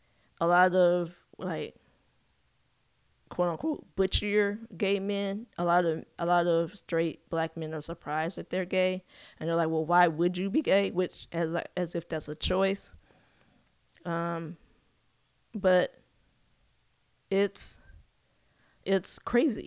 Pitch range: 165-190 Hz